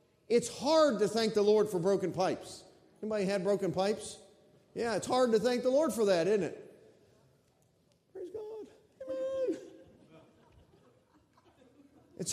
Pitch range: 175-245 Hz